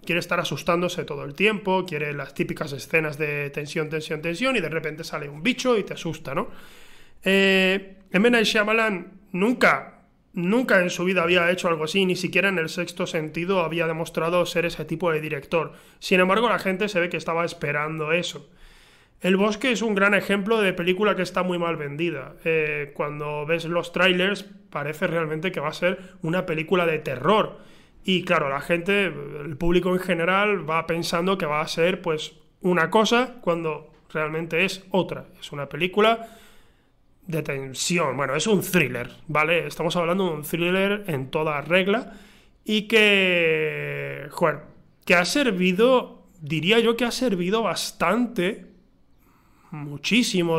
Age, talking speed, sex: 20-39, 165 wpm, male